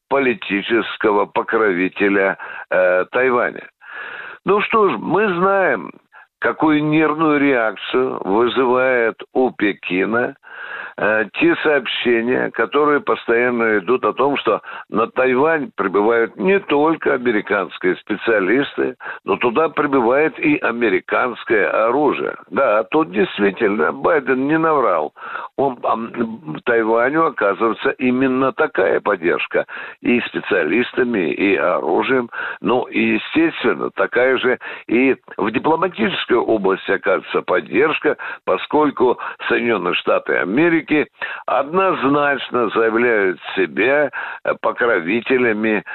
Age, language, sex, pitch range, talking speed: 60-79, Russian, male, 115-190 Hz, 95 wpm